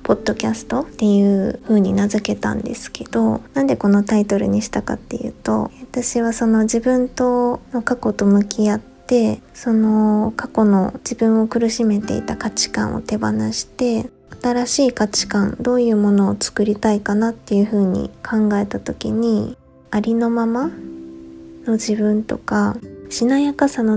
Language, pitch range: Japanese, 205-240 Hz